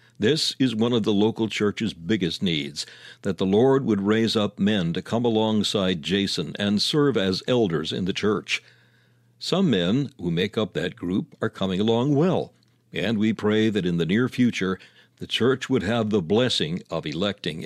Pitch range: 95-125 Hz